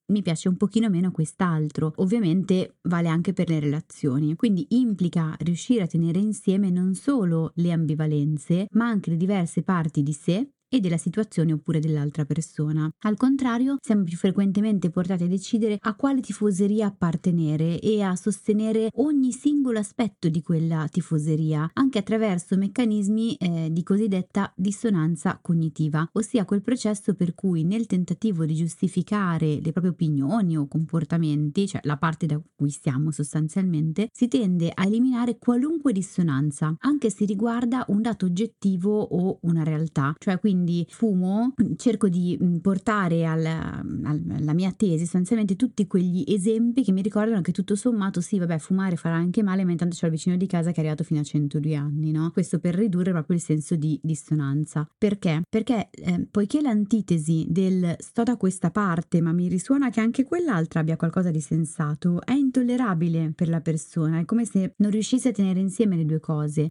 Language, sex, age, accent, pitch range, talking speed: Italian, female, 20-39, native, 165-215 Hz, 165 wpm